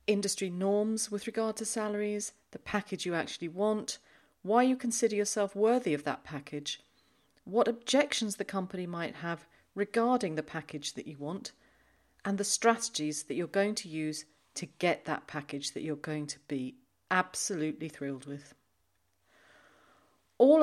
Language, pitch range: English, 150-215 Hz